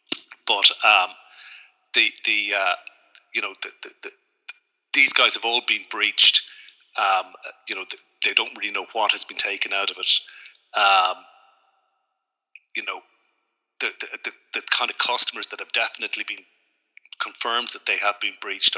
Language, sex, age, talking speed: English, male, 40-59, 165 wpm